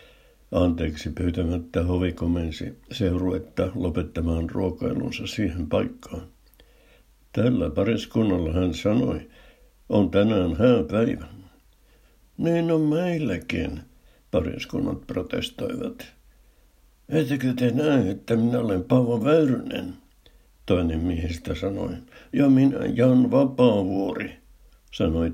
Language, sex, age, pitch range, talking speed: Finnish, male, 60-79, 85-110 Hz, 90 wpm